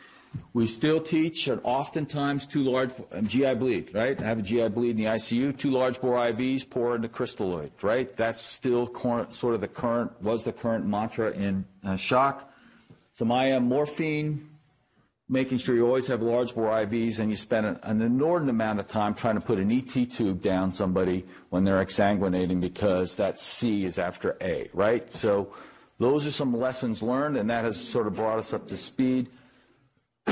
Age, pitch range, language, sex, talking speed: 50-69, 100-125 Hz, English, male, 185 wpm